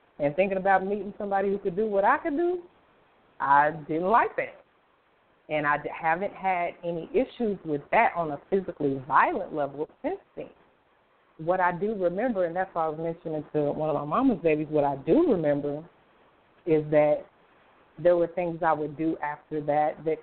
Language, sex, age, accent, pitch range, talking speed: English, female, 30-49, American, 150-195 Hz, 185 wpm